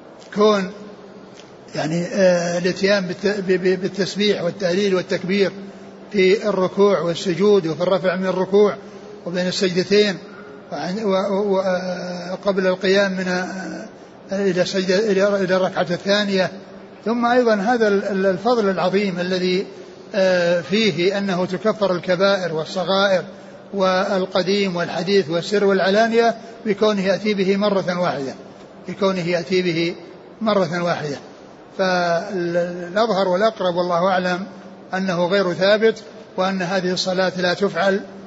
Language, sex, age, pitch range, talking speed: Arabic, male, 60-79, 175-195 Hz, 95 wpm